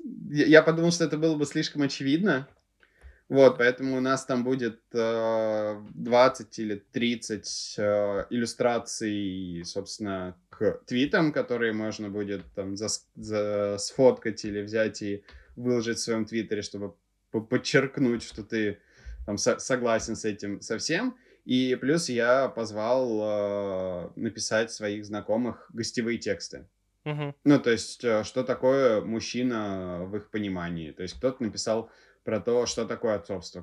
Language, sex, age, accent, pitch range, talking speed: Russian, male, 20-39, native, 100-125 Hz, 125 wpm